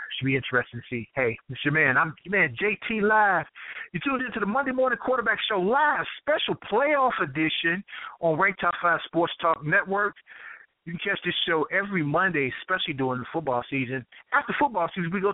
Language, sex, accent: English, male, American